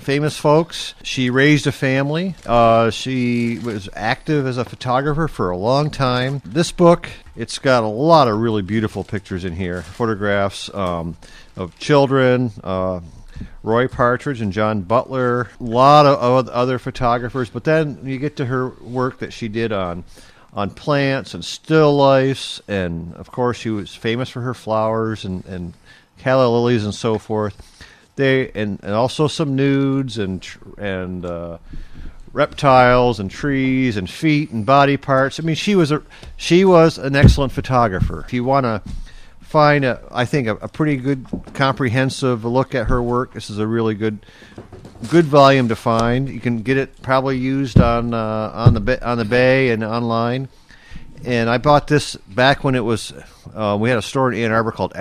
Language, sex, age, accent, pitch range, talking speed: English, male, 50-69, American, 105-135 Hz, 175 wpm